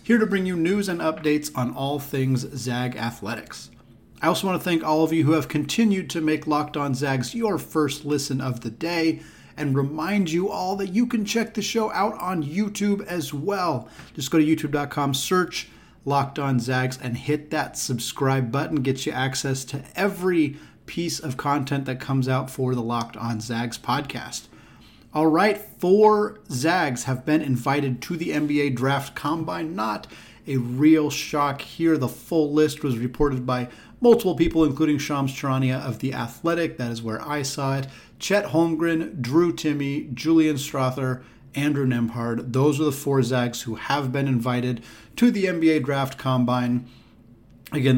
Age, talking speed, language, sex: 30-49, 175 wpm, English, male